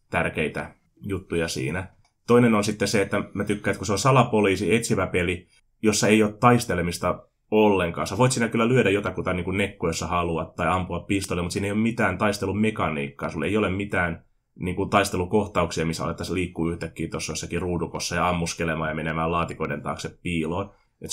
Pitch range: 85-105 Hz